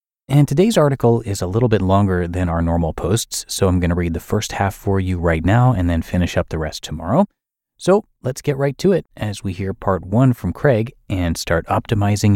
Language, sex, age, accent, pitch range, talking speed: English, male, 30-49, American, 85-125 Hz, 230 wpm